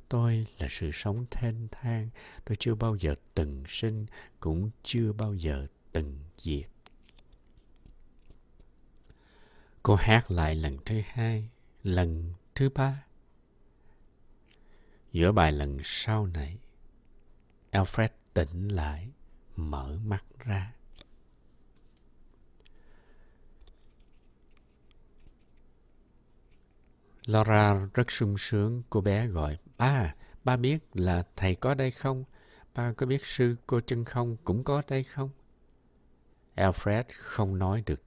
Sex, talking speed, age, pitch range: male, 105 wpm, 60-79, 75-115 Hz